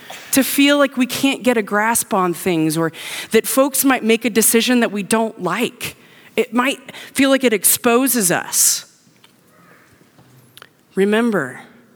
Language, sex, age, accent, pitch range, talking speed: English, female, 30-49, American, 200-320 Hz, 145 wpm